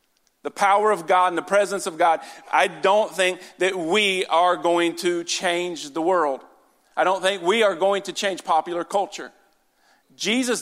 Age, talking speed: 40-59, 175 wpm